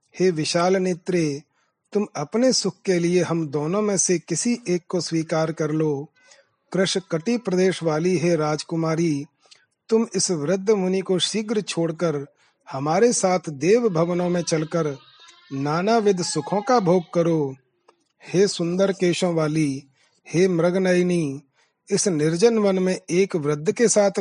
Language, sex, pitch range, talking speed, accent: Hindi, male, 155-190 Hz, 135 wpm, native